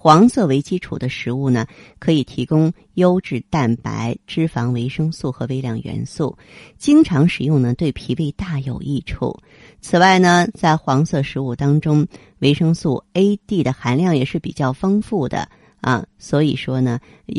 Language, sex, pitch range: Chinese, female, 130-175 Hz